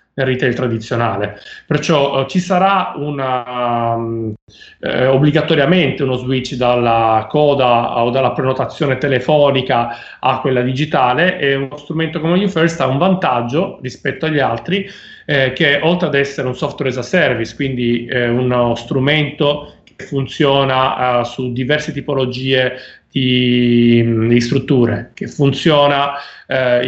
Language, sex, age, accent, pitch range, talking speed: Italian, male, 30-49, native, 125-145 Hz, 125 wpm